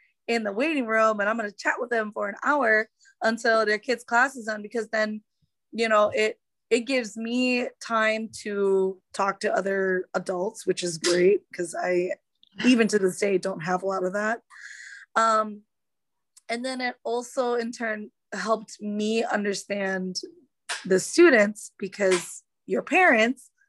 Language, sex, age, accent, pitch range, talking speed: English, female, 20-39, American, 200-245 Hz, 160 wpm